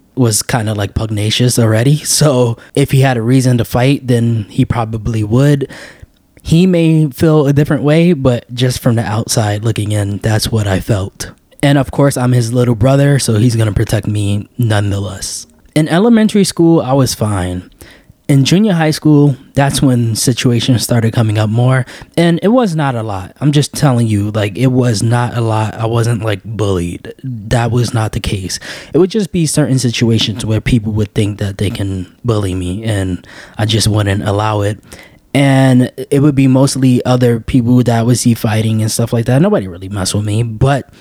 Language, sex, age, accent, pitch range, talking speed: English, male, 20-39, American, 110-135 Hz, 195 wpm